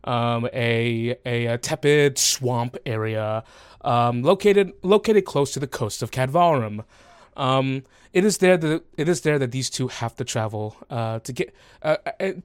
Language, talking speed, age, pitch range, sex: English, 165 wpm, 20-39, 115-155 Hz, male